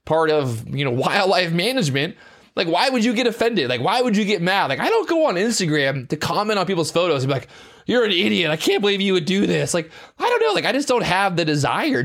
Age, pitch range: 20-39, 155-235 Hz